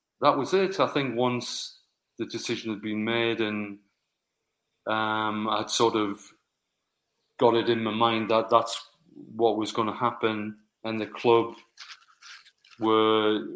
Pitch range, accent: 110-125 Hz, British